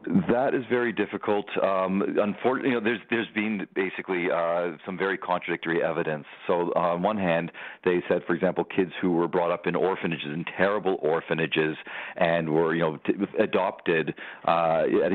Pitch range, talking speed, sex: 85-95 Hz, 175 wpm, male